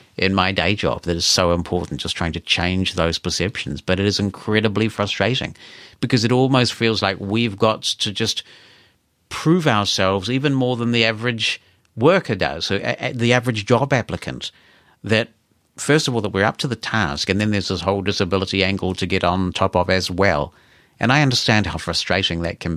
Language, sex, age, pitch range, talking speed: English, male, 50-69, 95-125 Hz, 190 wpm